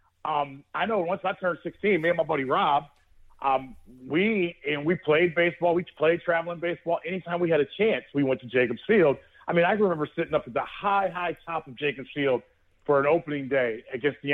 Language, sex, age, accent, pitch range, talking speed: English, male, 40-59, American, 130-170 Hz, 220 wpm